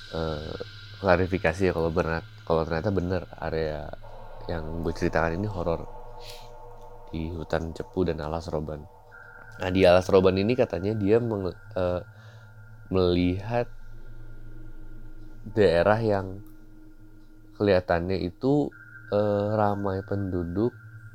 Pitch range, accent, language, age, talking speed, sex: 90-110 Hz, native, Indonesian, 20-39, 105 wpm, male